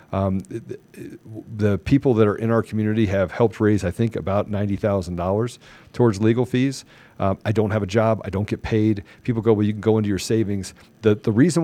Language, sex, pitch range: English, male, 100-125 Hz